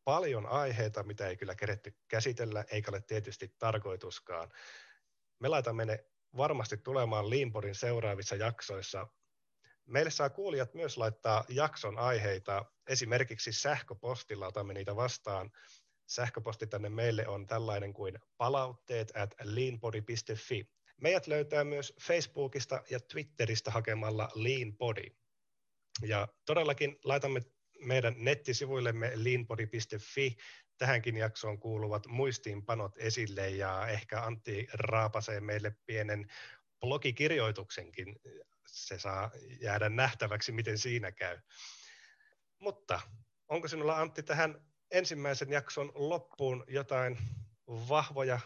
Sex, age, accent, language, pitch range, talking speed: male, 30-49, native, Finnish, 110-135 Hz, 105 wpm